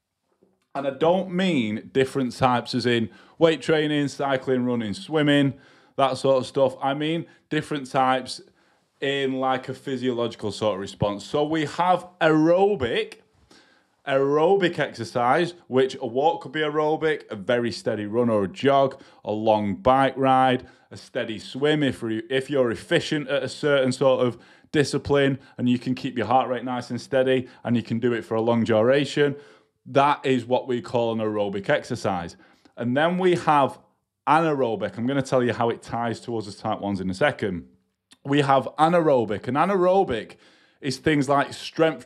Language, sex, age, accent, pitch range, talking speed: English, male, 20-39, British, 115-145 Hz, 170 wpm